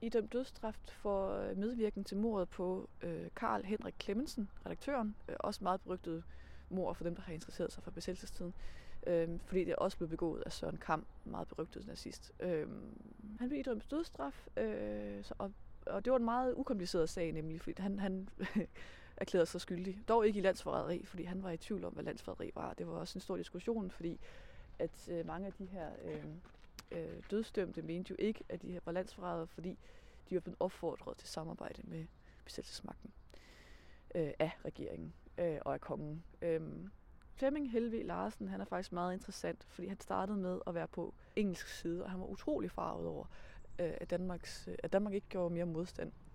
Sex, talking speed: female, 180 wpm